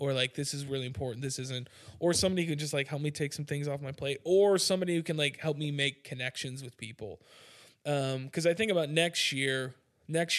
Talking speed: 235 wpm